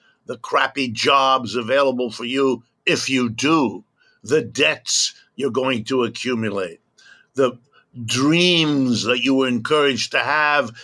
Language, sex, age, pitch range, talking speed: English, male, 60-79, 125-150 Hz, 125 wpm